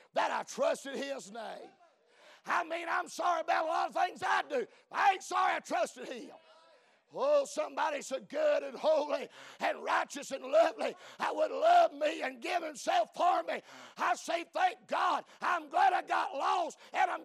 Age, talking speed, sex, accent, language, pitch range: 50-69, 180 wpm, male, American, English, 265-355 Hz